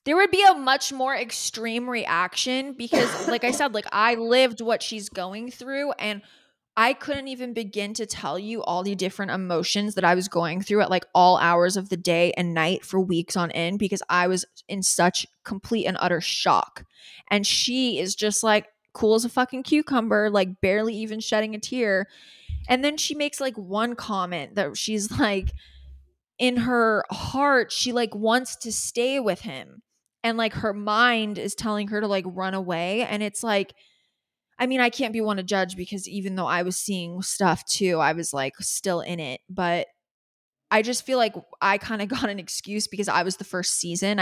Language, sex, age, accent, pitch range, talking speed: English, female, 20-39, American, 180-225 Hz, 200 wpm